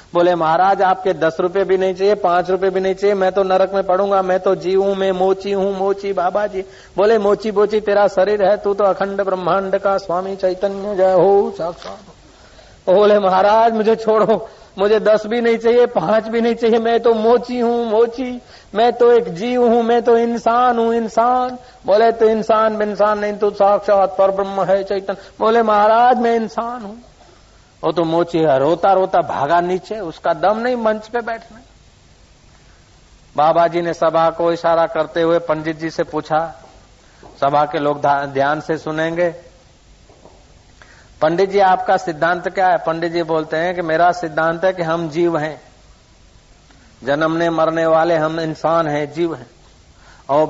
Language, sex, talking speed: Hindi, male, 150 wpm